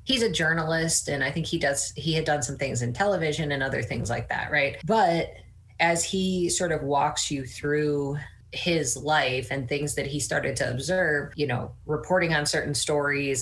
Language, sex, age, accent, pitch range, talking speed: English, female, 30-49, American, 135-160 Hz, 195 wpm